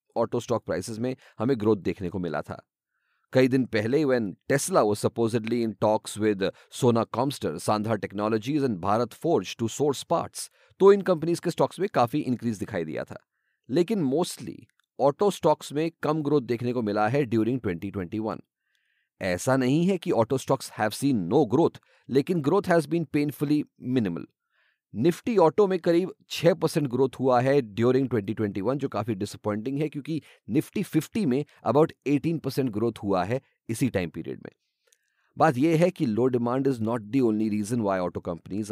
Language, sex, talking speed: English, male, 145 wpm